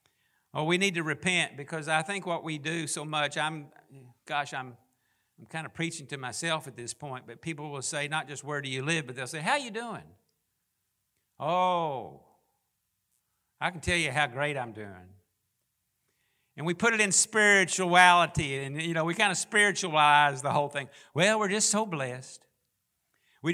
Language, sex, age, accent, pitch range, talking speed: English, male, 60-79, American, 125-170 Hz, 185 wpm